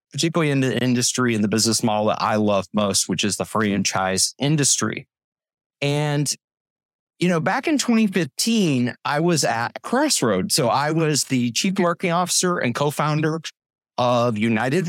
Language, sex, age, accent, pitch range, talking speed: English, male, 30-49, American, 115-160 Hz, 155 wpm